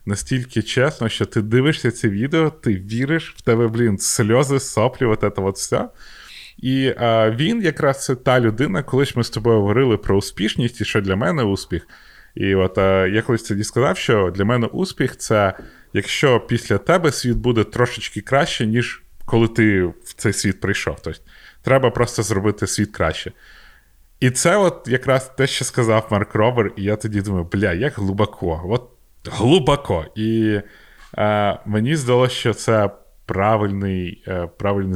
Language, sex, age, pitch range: Ukrainian, male, 20-39, 100-125 Hz